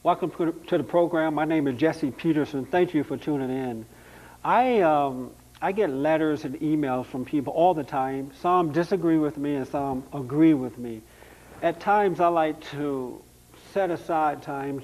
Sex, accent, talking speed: male, American, 175 wpm